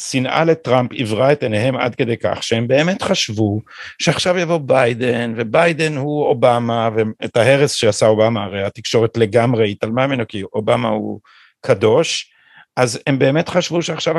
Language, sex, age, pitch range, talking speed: Hebrew, male, 50-69, 115-160 Hz, 150 wpm